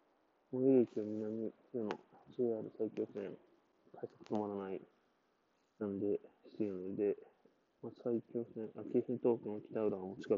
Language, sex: Japanese, male